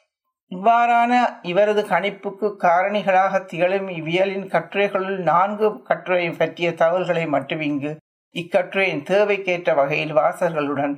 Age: 60-79